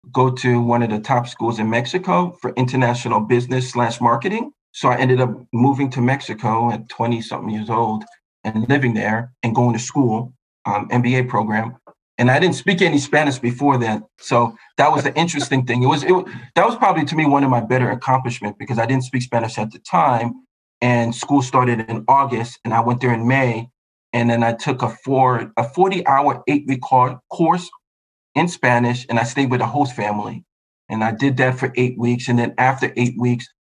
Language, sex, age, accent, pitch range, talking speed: English, male, 40-59, American, 115-135 Hz, 205 wpm